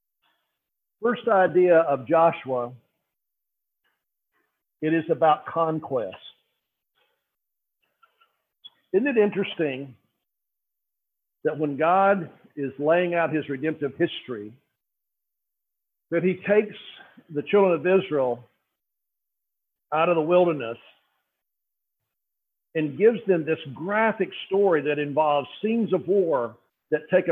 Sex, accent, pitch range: male, American, 150-185 Hz